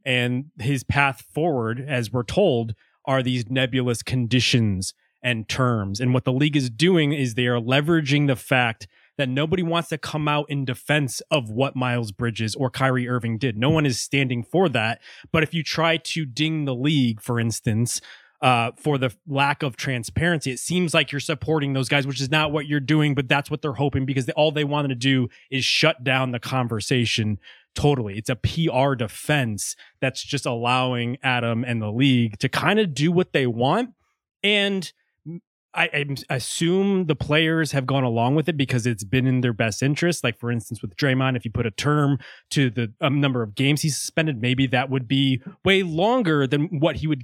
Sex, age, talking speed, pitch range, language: male, 20-39, 200 wpm, 125-150 Hz, English